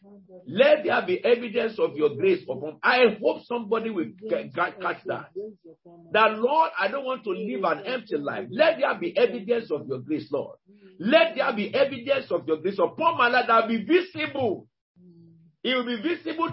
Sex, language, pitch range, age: male, English, 185-305 Hz, 50-69